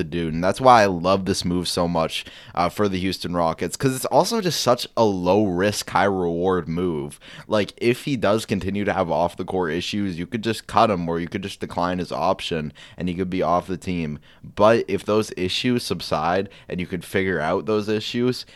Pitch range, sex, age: 90-110 Hz, male, 20-39